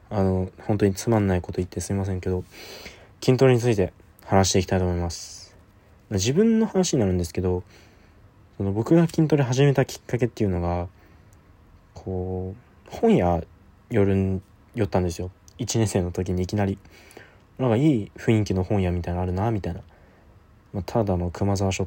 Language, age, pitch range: Japanese, 20-39, 90-120 Hz